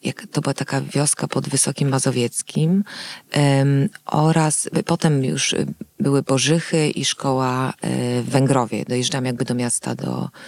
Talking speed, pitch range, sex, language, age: 120 wpm, 130-155 Hz, female, Polish, 30-49